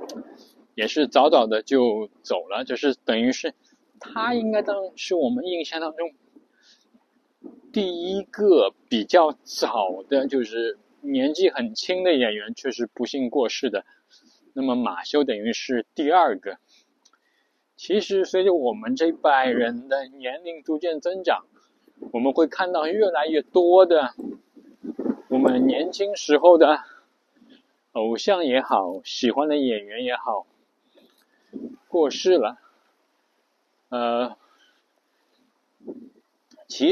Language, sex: Chinese, male